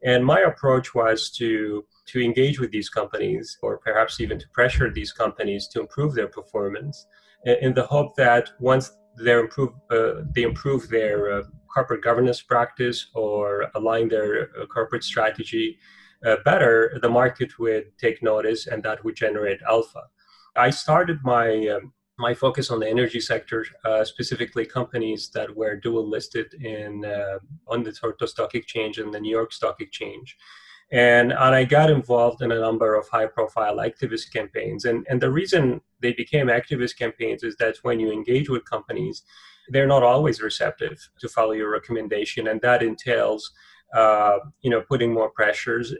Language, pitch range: English, 110-130 Hz